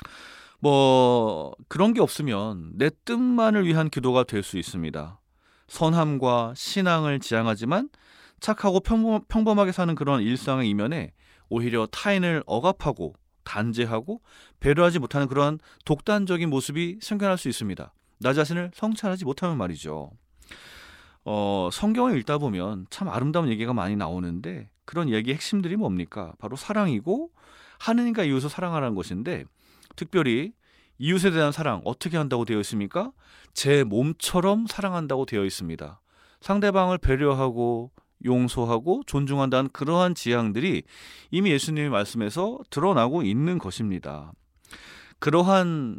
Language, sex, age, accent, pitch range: Korean, male, 30-49, native, 110-175 Hz